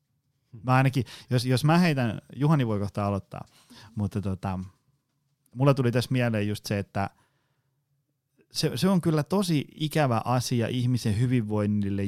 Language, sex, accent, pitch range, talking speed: Finnish, male, native, 105-135 Hz, 140 wpm